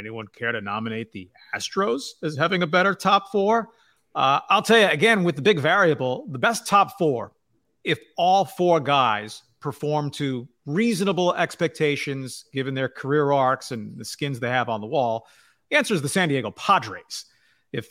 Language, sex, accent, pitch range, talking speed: English, male, American, 130-175 Hz, 180 wpm